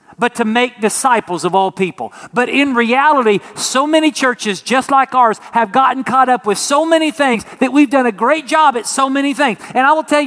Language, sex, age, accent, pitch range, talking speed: English, male, 50-69, American, 205-265 Hz, 220 wpm